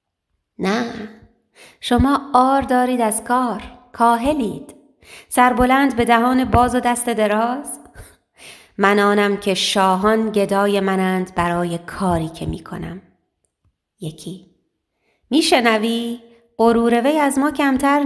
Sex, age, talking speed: female, 30-49, 100 wpm